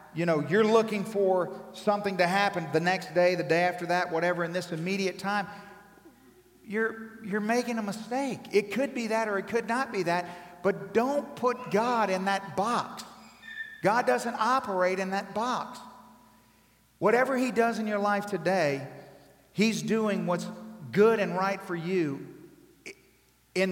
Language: English